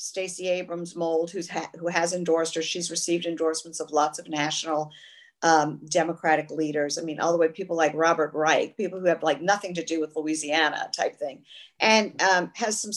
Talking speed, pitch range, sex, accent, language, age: 195 wpm, 160-190 Hz, female, American, English, 50-69